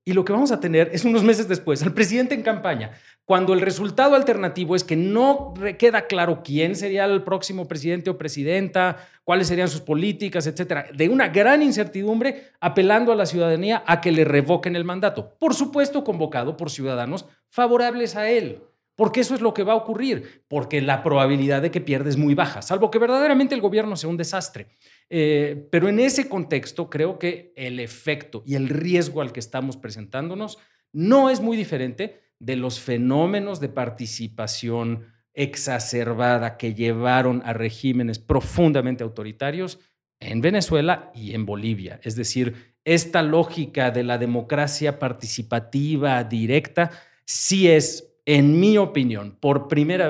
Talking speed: 160 wpm